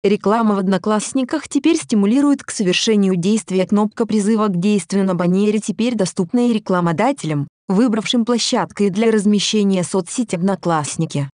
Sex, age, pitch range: female, 20-39, 190-230 Hz